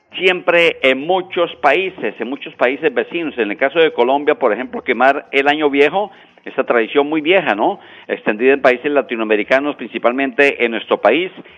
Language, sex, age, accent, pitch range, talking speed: Spanish, male, 50-69, Mexican, 120-160 Hz, 165 wpm